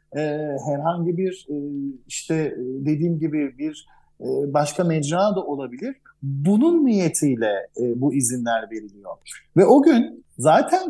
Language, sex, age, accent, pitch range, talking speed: Turkish, male, 50-69, native, 140-195 Hz, 105 wpm